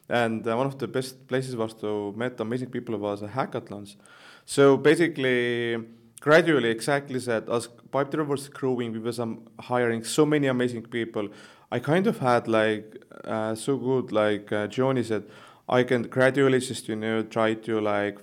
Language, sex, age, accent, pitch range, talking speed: Danish, male, 30-49, Finnish, 110-125 Hz, 175 wpm